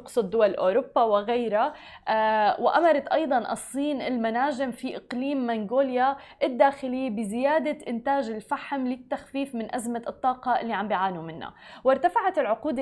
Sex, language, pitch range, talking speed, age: female, Arabic, 230-275 Hz, 120 wpm, 20-39